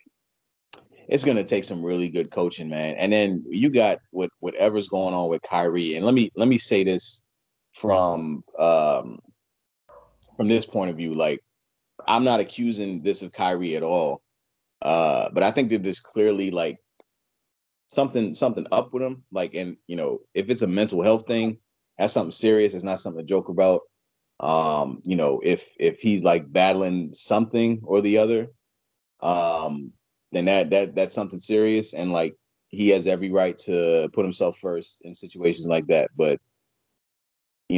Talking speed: 175 wpm